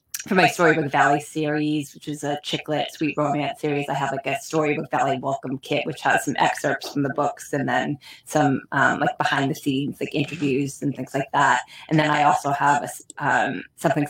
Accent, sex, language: American, female, English